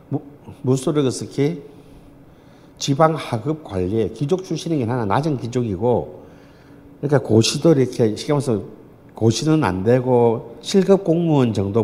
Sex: male